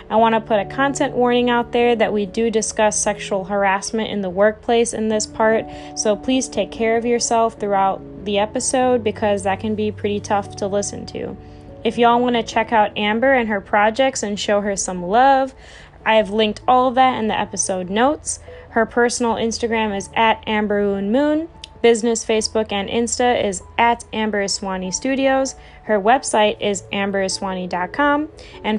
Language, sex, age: English, female, 10-29